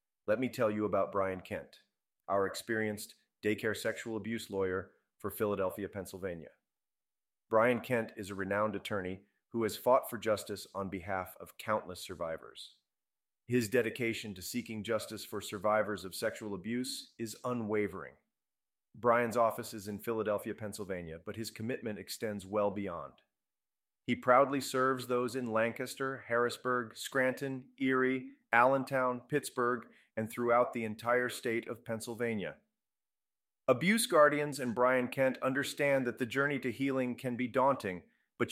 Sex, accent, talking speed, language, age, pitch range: male, American, 140 wpm, English, 30-49, 105-125 Hz